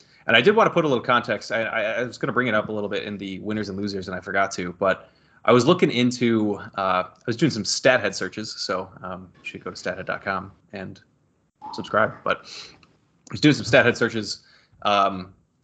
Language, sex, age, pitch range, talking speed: English, male, 20-39, 95-120 Hz, 225 wpm